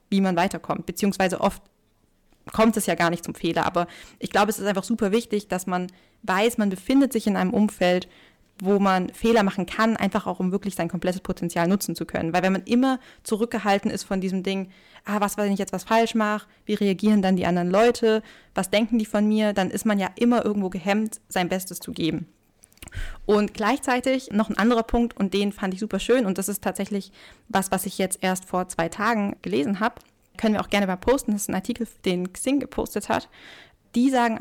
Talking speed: 220 wpm